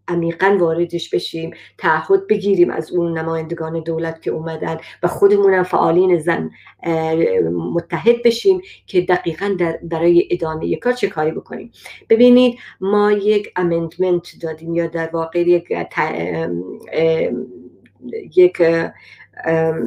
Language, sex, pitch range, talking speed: Persian, female, 165-210 Hz, 110 wpm